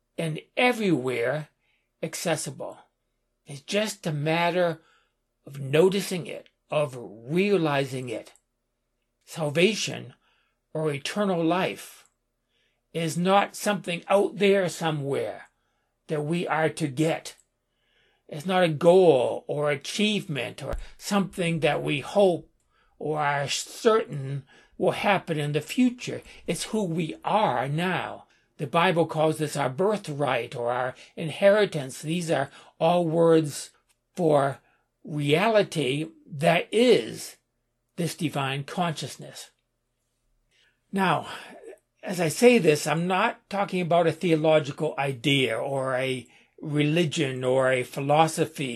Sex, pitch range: male, 145-180 Hz